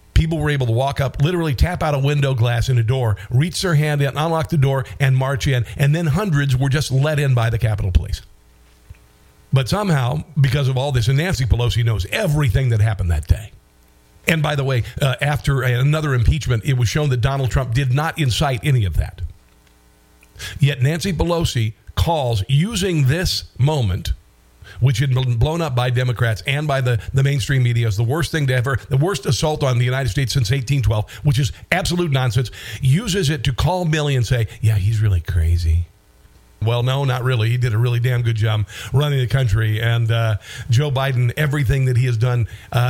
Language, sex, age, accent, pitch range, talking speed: English, male, 50-69, American, 115-145 Hz, 205 wpm